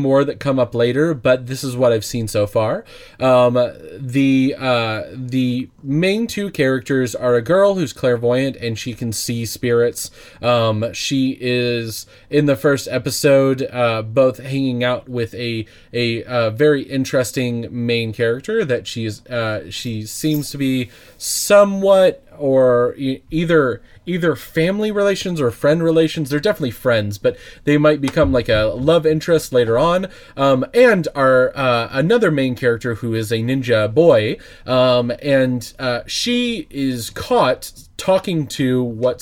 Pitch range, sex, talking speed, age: 120-145 Hz, male, 155 wpm, 20-39